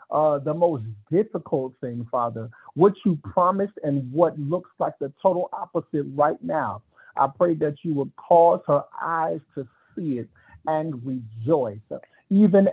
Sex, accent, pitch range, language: male, American, 135-180 Hz, English